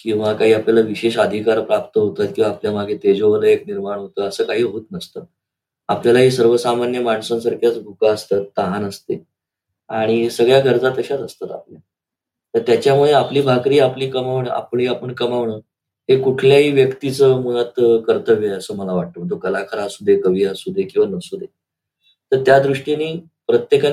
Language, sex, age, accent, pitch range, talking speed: Marathi, male, 20-39, native, 115-150 Hz, 75 wpm